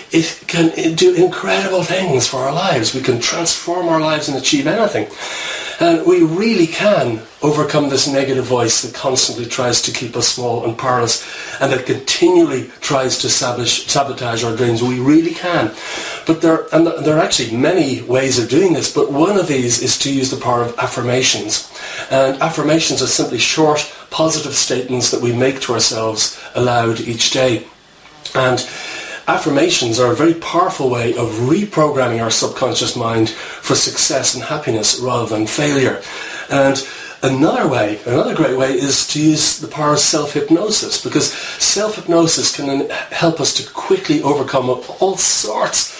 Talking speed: 160 wpm